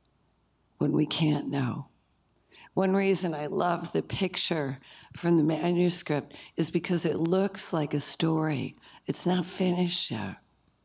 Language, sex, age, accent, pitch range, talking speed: English, female, 60-79, American, 150-180 Hz, 135 wpm